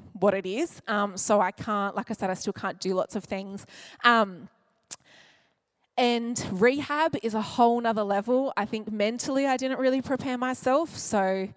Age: 20-39